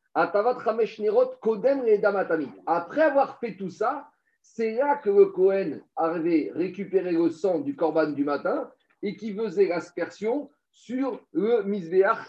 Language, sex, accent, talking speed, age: French, male, French, 120 wpm, 50-69